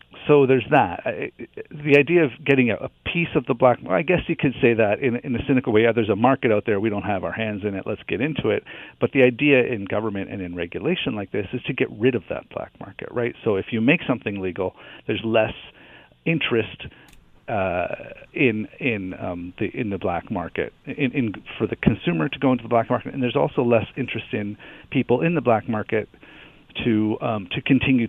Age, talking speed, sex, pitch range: 50-69, 225 wpm, male, 100-130 Hz